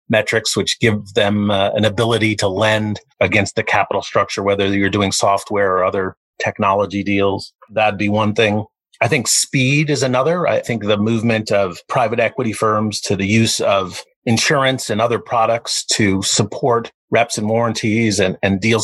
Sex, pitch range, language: male, 100-120 Hz, English